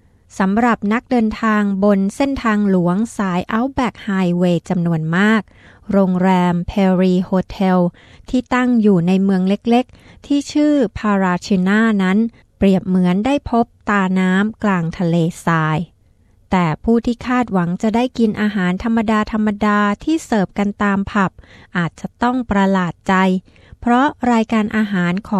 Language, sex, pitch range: Thai, female, 185-225 Hz